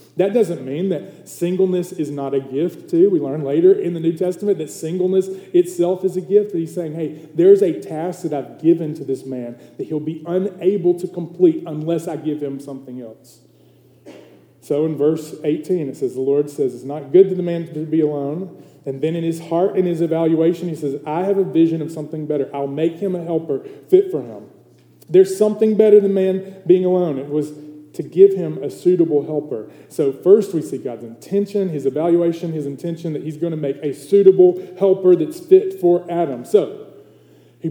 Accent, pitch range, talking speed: American, 145-185 Hz, 205 wpm